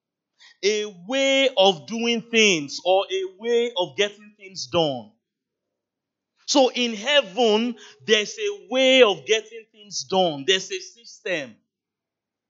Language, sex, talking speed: English, male, 120 wpm